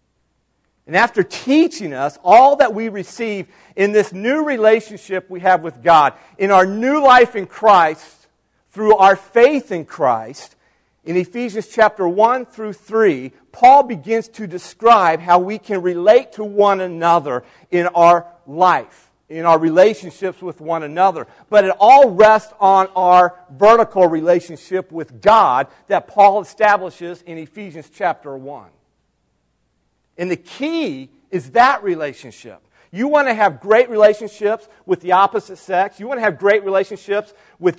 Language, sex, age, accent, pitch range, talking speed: English, male, 40-59, American, 170-215 Hz, 150 wpm